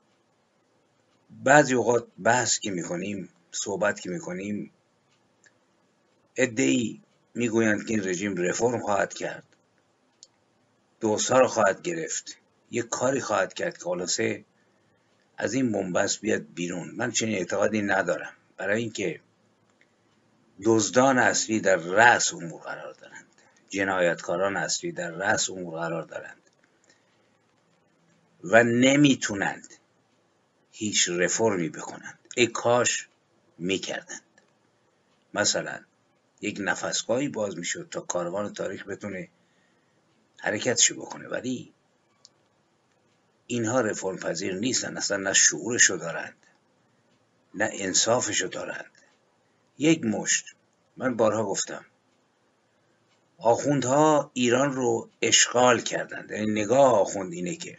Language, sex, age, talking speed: Persian, male, 50-69, 105 wpm